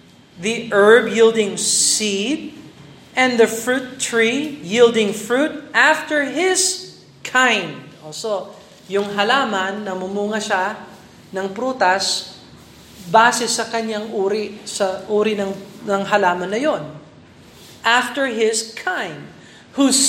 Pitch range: 195-245 Hz